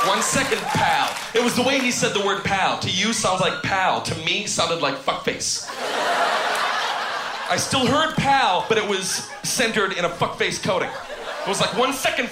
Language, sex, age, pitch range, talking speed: Danish, male, 30-49, 120-195 Hz, 200 wpm